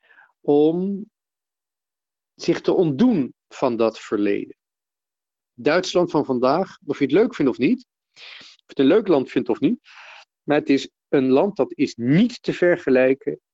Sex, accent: male, Dutch